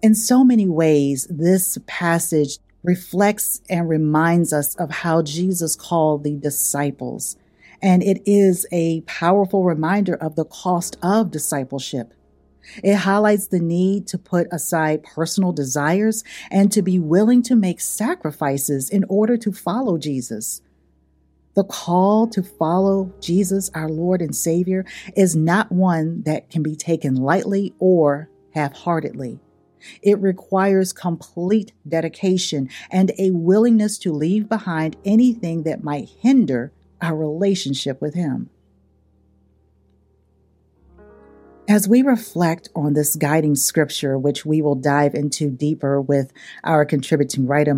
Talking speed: 130 wpm